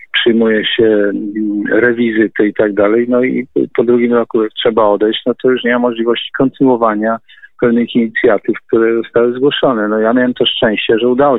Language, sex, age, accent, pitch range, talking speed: Polish, male, 50-69, native, 105-115 Hz, 170 wpm